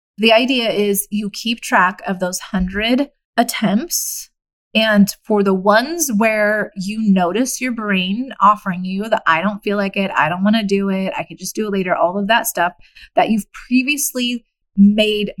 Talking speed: 185 wpm